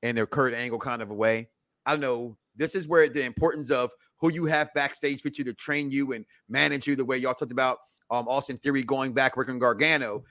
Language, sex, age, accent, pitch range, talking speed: English, male, 30-49, American, 135-190 Hz, 240 wpm